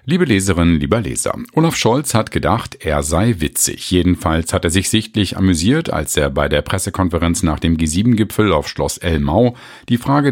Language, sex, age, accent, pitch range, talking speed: German, male, 50-69, German, 80-125 Hz, 175 wpm